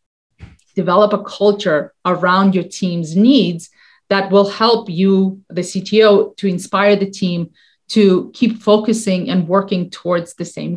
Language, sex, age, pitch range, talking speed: English, female, 30-49, 185-220 Hz, 140 wpm